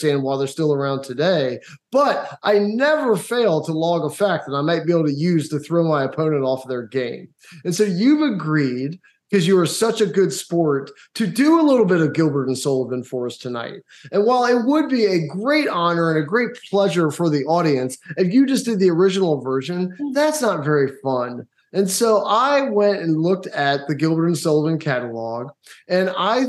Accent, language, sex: American, English, male